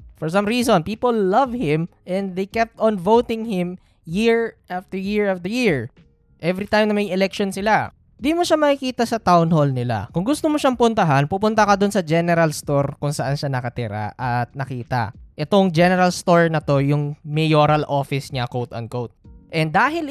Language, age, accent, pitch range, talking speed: Filipino, 20-39, native, 145-215 Hz, 180 wpm